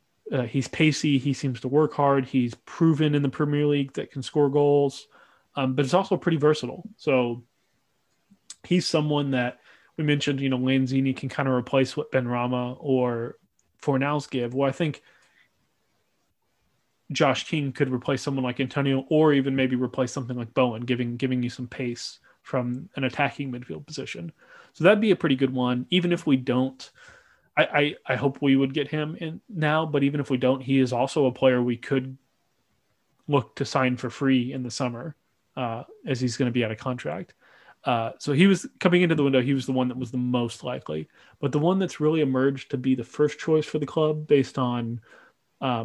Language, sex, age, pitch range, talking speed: English, male, 20-39, 125-145 Hz, 200 wpm